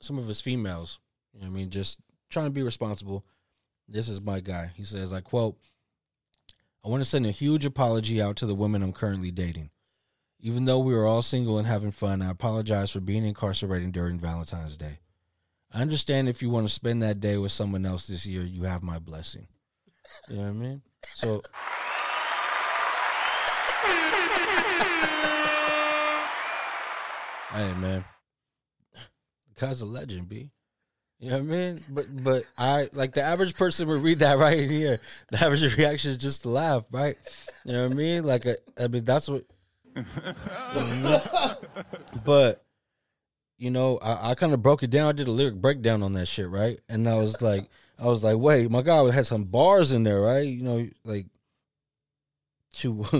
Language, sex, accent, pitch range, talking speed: English, male, American, 100-140 Hz, 180 wpm